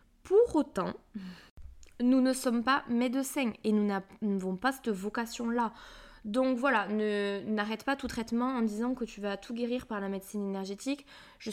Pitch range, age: 205-255 Hz, 20-39